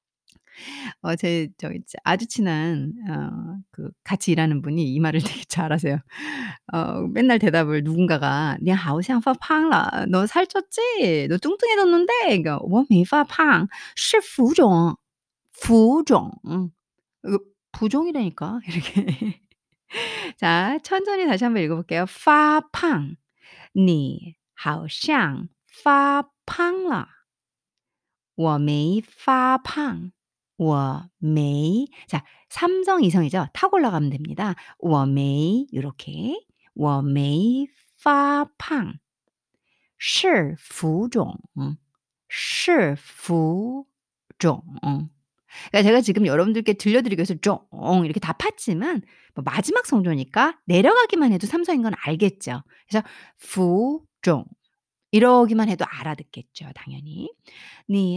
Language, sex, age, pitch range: Korean, female, 40-59, 160-270 Hz